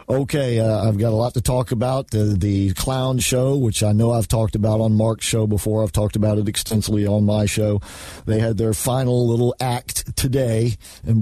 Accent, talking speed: American, 210 wpm